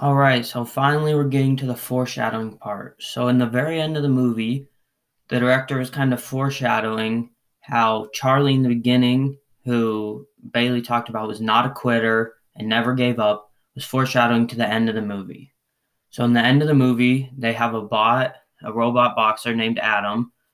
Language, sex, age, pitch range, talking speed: English, male, 20-39, 110-125 Hz, 190 wpm